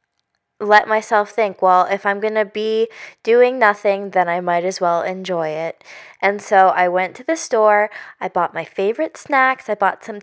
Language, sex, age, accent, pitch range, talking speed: English, female, 10-29, American, 190-230 Hz, 195 wpm